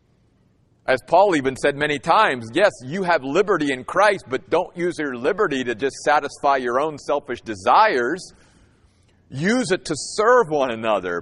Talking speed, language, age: 160 wpm, English, 50-69